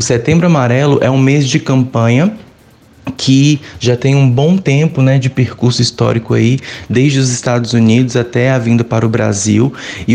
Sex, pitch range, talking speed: male, 120-145 Hz, 175 wpm